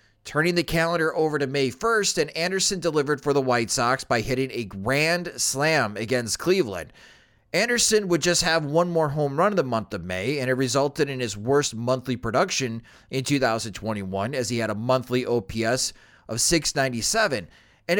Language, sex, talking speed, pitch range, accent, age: English, male, 175 wpm, 125-175 Hz, American, 30-49